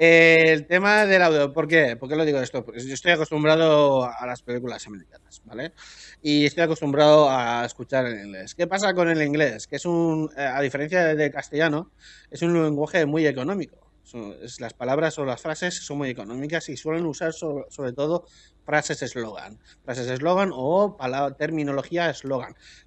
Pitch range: 125-160 Hz